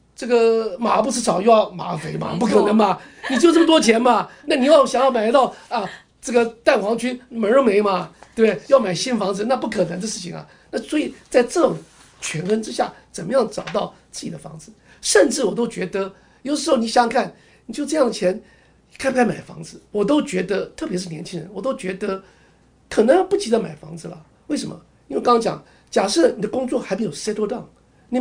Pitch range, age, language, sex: 180-250 Hz, 50-69, Chinese, male